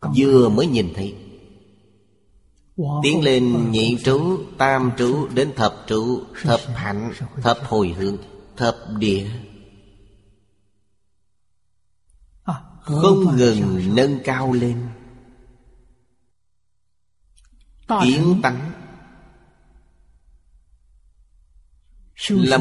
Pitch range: 100-125 Hz